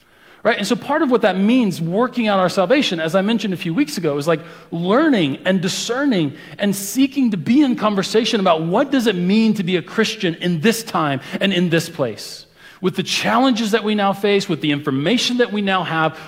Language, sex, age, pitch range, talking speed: English, male, 40-59, 165-225 Hz, 220 wpm